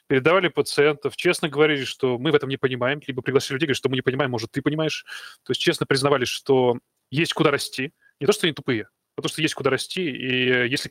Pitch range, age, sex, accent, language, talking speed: 130-165 Hz, 20-39, male, native, Russian, 230 wpm